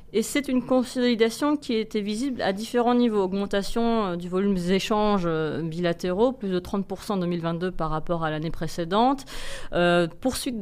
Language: French